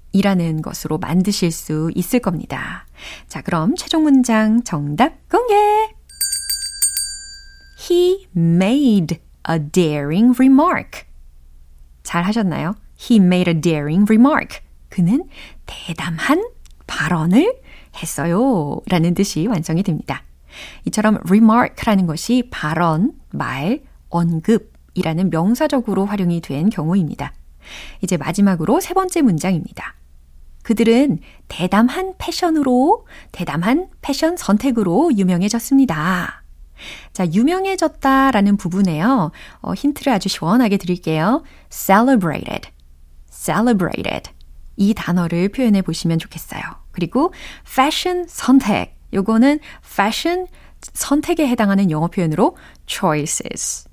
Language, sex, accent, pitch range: Korean, female, native, 170-275 Hz